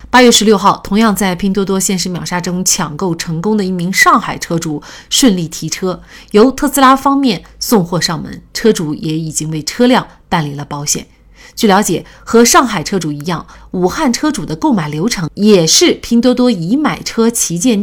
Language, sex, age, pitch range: Chinese, female, 30-49, 170-245 Hz